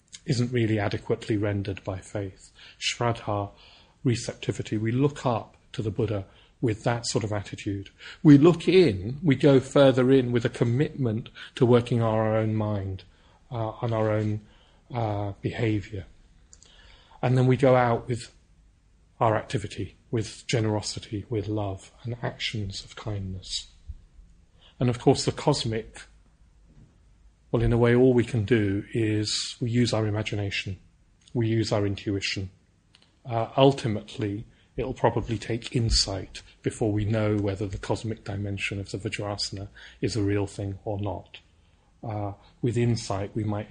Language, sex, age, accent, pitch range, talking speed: English, male, 40-59, British, 100-120 Hz, 145 wpm